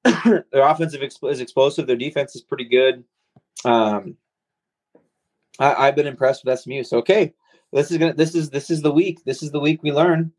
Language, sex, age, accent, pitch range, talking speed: English, male, 30-49, American, 115-140 Hz, 195 wpm